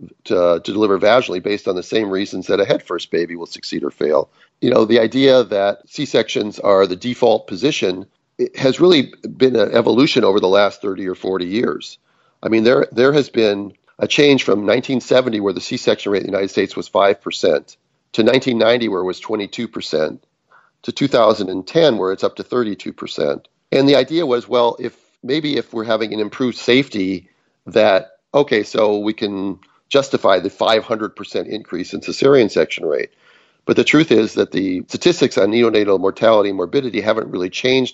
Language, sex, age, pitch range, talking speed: English, male, 40-59, 95-130 Hz, 180 wpm